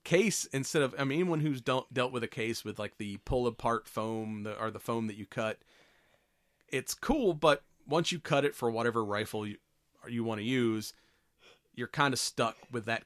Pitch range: 105-125 Hz